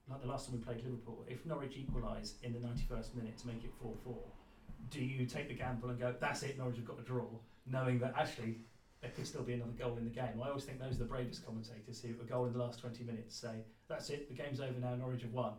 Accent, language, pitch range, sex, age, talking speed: British, English, 115-125 Hz, male, 40-59, 270 wpm